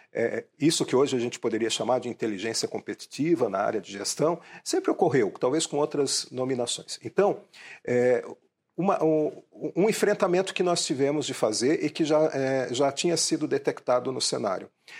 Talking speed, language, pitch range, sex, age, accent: 170 wpm, Portuguese, 120-180 Hz, male, 40-59, Brazilian